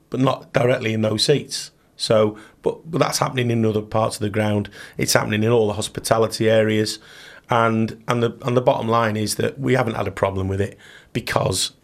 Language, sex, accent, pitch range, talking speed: English, male, British, 105-120 Hz, 210 wpm